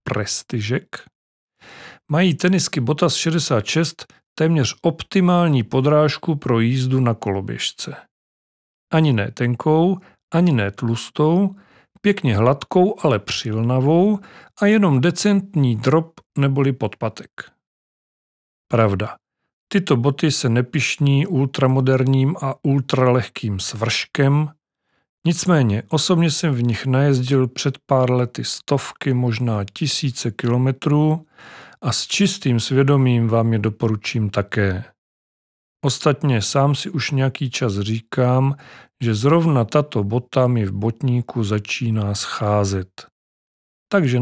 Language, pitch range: Czech, 115-155 Hz